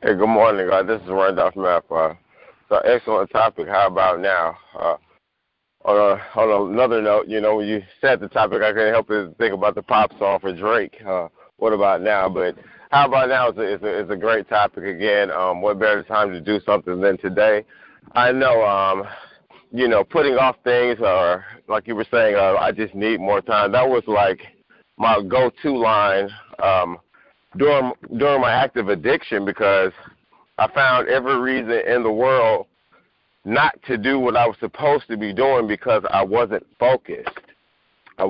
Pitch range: 105-125 Hz